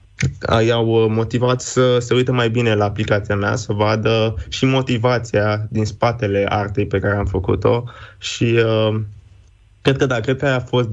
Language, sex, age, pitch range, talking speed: Romanian, male, 20-39, 105-120 Hz, 175 wpm